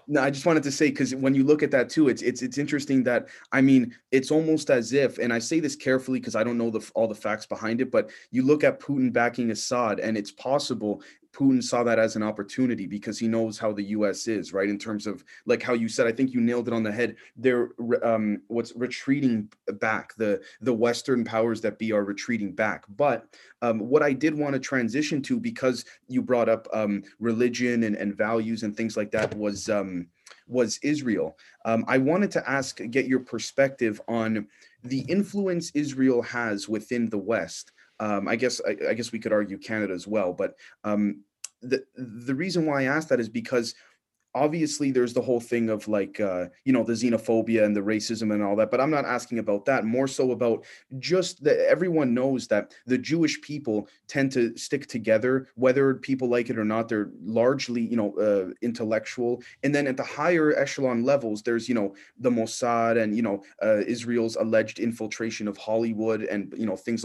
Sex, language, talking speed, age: male, English, 210 wpm, 20-39